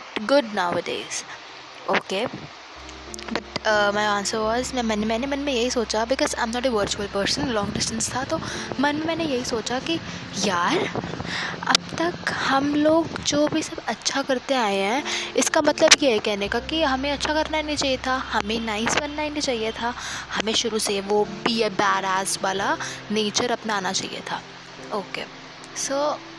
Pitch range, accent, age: 210-285 Hz, native, 20-39